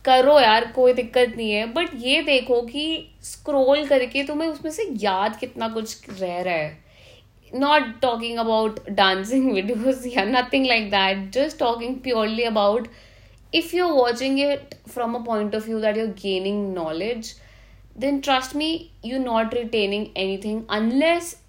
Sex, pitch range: female, 205-265 Hz